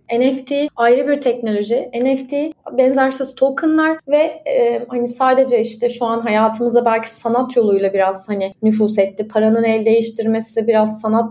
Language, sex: Turkish, female